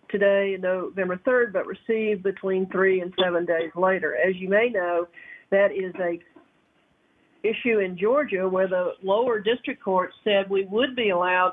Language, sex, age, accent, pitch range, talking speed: English, female, 50-69, American, 180-205 Hz, 160 wpm